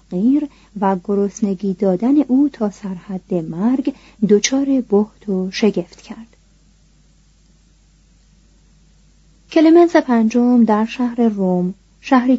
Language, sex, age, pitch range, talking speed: Persian, female, 30-49, 180-240 Hz, 90 wpm